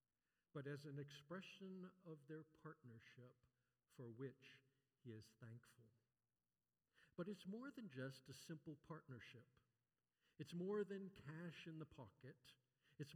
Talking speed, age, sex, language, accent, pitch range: 130 wpm, 50-69, male, English, American, 125-160 Hz